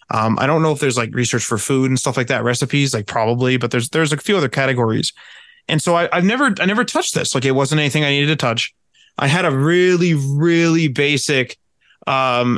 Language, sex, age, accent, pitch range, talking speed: English, male, 20-39, American, 120-150 Hz, 230 wpm